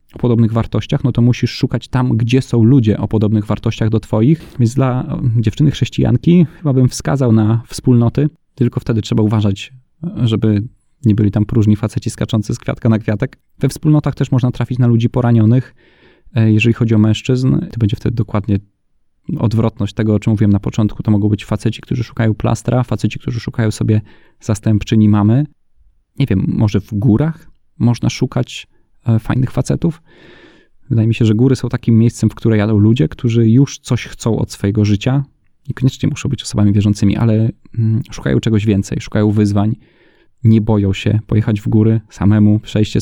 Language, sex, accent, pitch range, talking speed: Polish, male, native, 105-125 Hz, 175 wpm